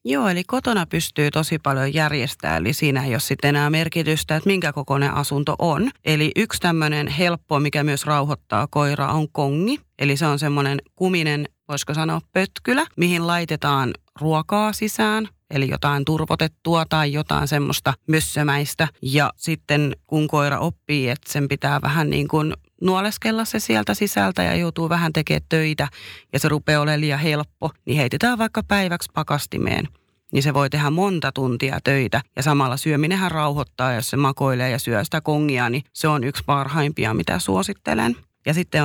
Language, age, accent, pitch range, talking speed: Finnish, 30-49, native, 140-165 Hz, 165 wpm